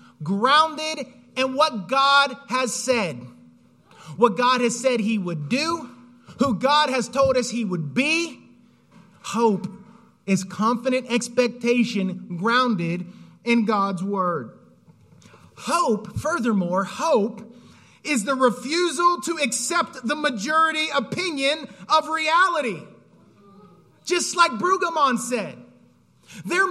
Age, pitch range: 30-49, 200-280 Hz